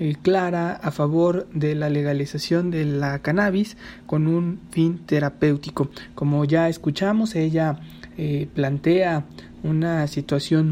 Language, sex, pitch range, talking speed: English, male, 150-170 Hz, 120 wpm